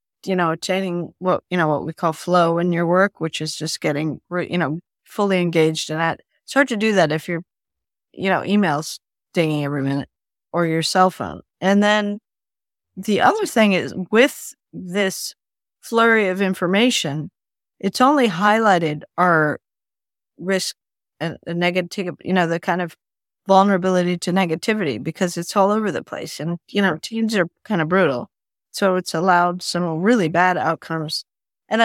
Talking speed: 165 wpm